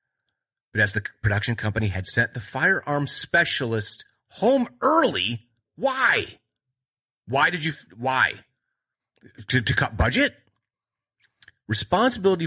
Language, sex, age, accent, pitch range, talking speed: English, male, 30-49, American, 100-140 Hz, 105 wpm